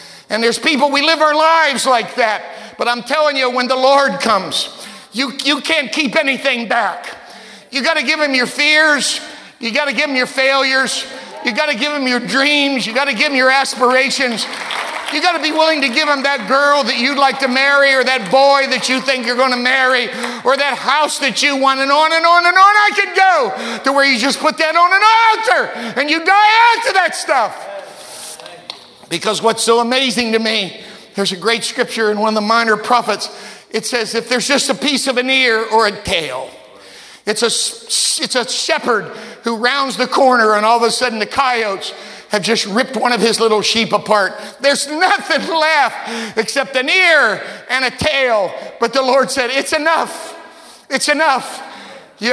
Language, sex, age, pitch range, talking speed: English, male, 50-69, 240-290 Hz, 205 wpm